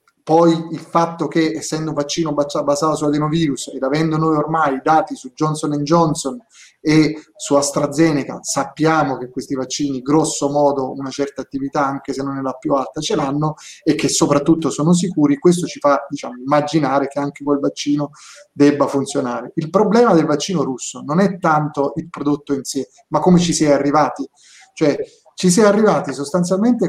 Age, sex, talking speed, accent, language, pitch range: 30-49, male, 180 wpm, native, Italian, 140-170 Hz